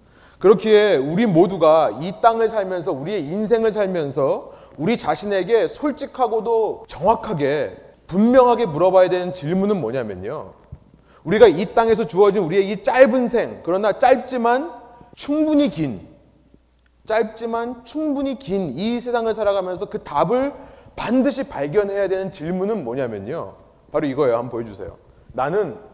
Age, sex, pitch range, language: 30-49, male, 160-240 Hz, Korean